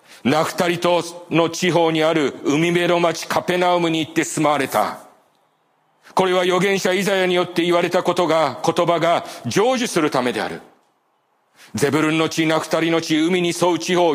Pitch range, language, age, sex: 160-200 Hz, Japanese, 40-59, male